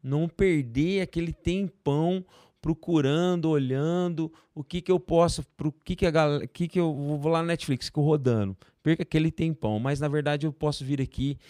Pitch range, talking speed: 120-160 Hz, 185 wpm